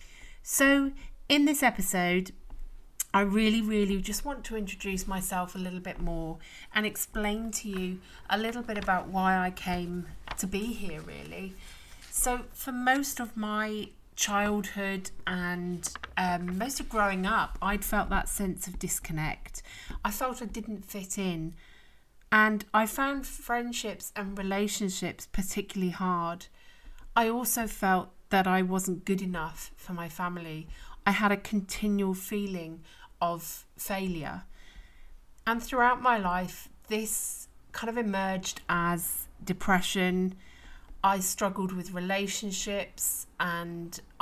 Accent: British